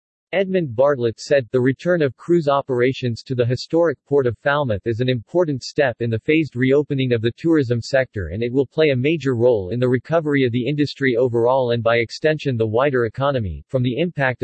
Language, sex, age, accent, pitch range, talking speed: English, male, 40-59, American, 120-150 Hz, 205 wpm